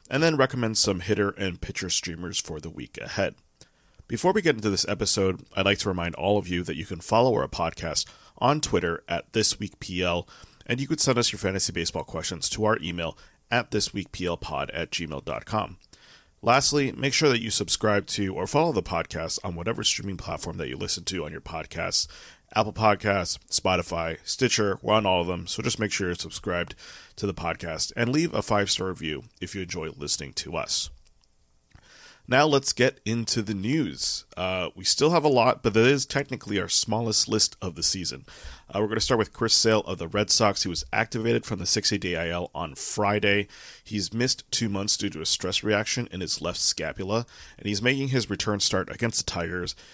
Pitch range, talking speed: 90-110 Hz, 205 wpm